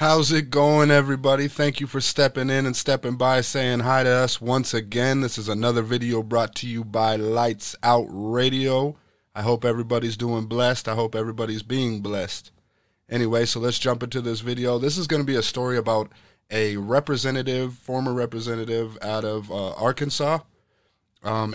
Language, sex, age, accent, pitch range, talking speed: English, male, 30-49, American, 110-135 Hz, 175 wpm